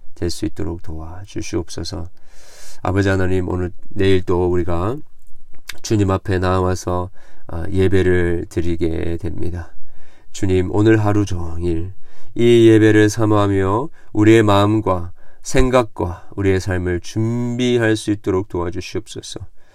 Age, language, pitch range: 40-59, Korean, 95-120 Hz